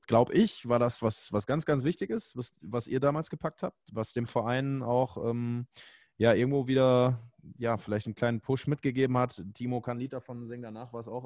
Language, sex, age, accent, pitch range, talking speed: German, male, 20-39, German, 110-135 Hz, 215 wpm